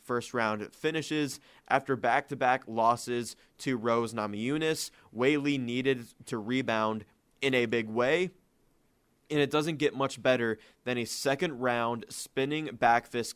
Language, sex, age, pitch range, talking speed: English, male, 20-39, 115-135 Hz, 130 wpm